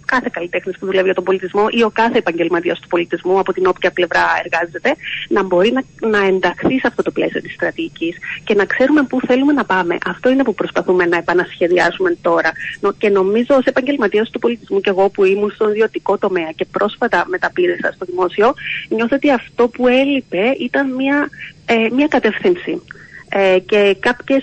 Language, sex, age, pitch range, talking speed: Greek, female, 30-49, 190-260 Hz, 180 wpm